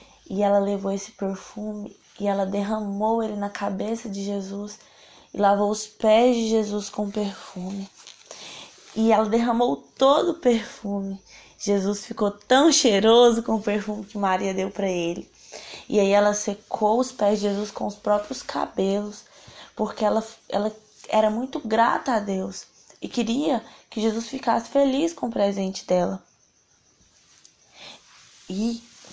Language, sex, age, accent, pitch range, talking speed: Portuguese, female, 10-29, Brazilian, 200-235 Hz, 145 wpm